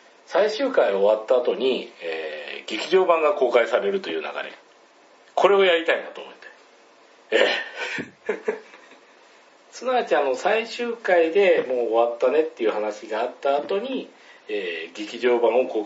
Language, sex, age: Japanese, male, 40-59